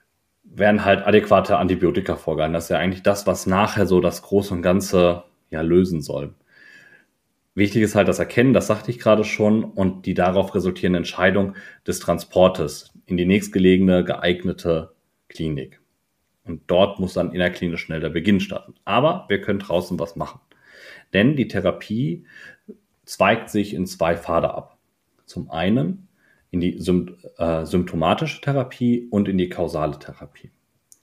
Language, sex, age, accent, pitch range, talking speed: German, male, 30-49, German, 85-105 Hz, 155 wpm